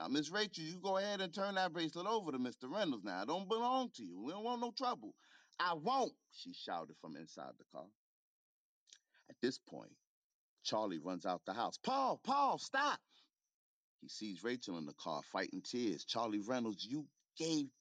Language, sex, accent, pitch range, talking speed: English, male, American, 145-230 Hz, 190 wpm